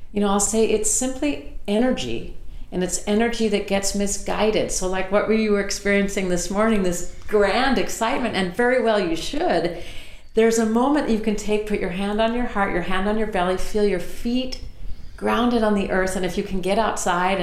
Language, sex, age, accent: English, female, 50-69, American